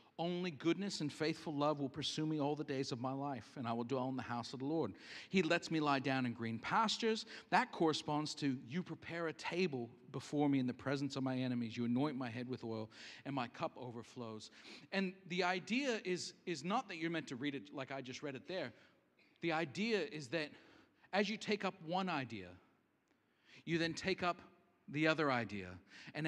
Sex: male